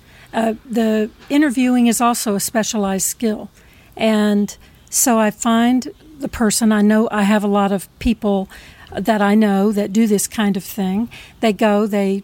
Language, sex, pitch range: English, female, 200-230 Hz